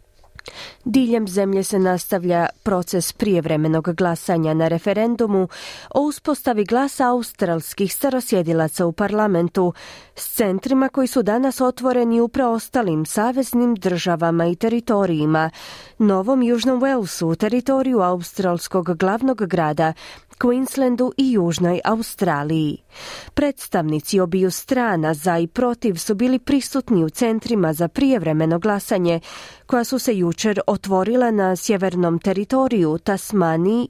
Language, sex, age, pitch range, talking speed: Croatian, female, 30-49, 175-250 Hz, 110 wpm